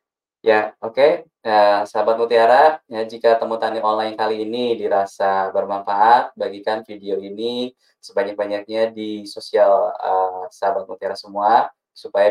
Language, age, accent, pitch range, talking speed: Indonesian, 20-39, native, 100-125 Hz, 120 wpm